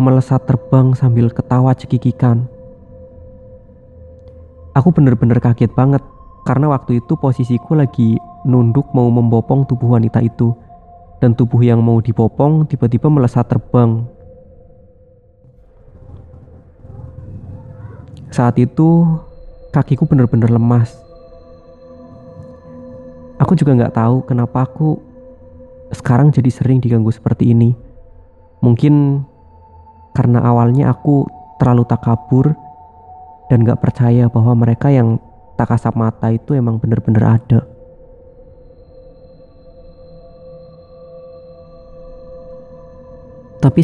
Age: 20-39